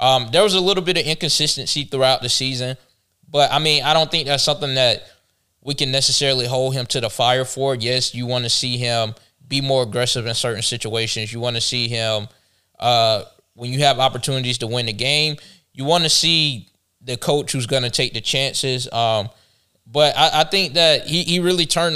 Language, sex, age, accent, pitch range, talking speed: English, male, 20-39, American, 115-135 Hz, 205 wpm